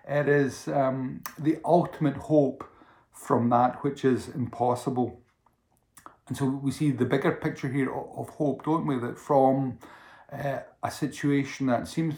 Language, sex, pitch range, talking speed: English, male, 130-155 Hz, 150 wpm